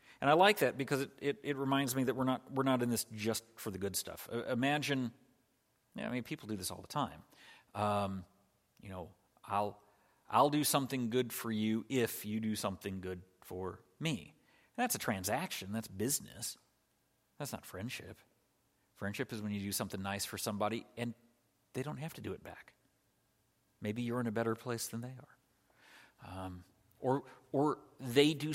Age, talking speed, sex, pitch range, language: 40-59, 190 wpm, male, 105-125 Hz, English